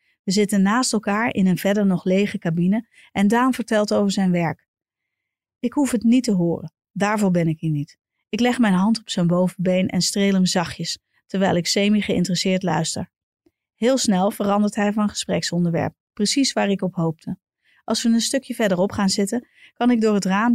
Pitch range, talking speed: 180-235 Hz, 190 wpm